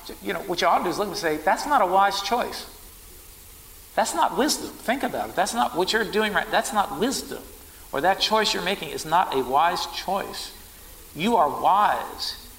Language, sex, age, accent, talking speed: English, male, 50-69, American, 210 wpm